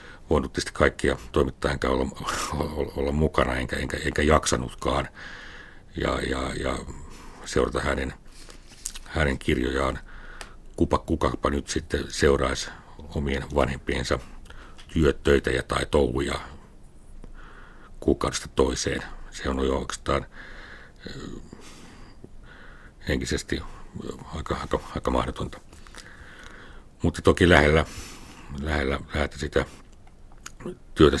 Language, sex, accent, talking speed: Finnish, male, native, 85 wpm